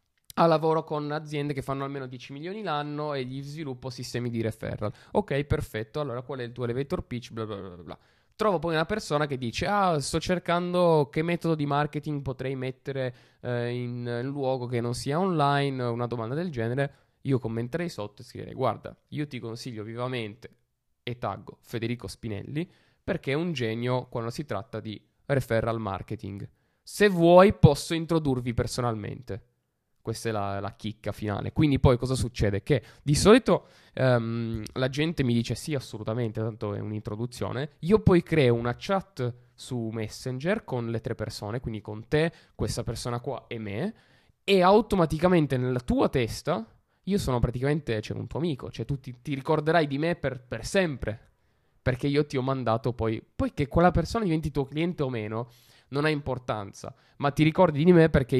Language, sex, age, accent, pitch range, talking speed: Italian, male, 20-39, native, 115-150 Hz, 175 wpm